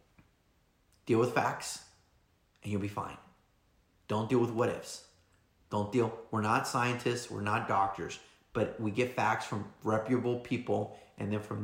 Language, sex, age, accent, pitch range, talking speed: English, male, 30-49, American, 105-125 Hz, 150 wpm